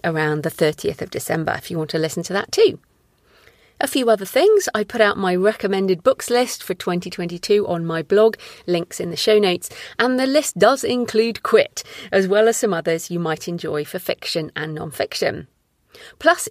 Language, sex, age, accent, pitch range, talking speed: English, female, 40-59, British, 175-240 Hz, 195 wpm